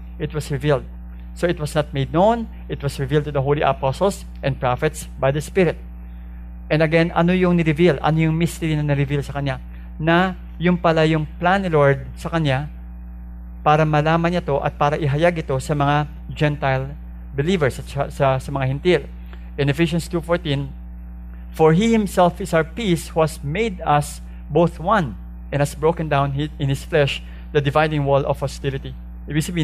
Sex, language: male, English